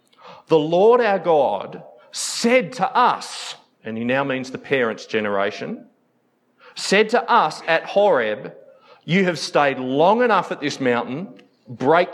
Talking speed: 140 wpm